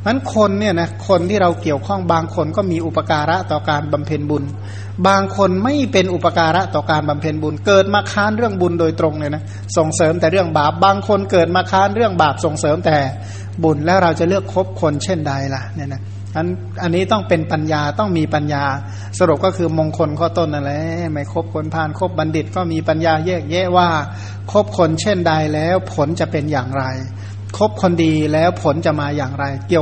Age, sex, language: 60-79, male, Thai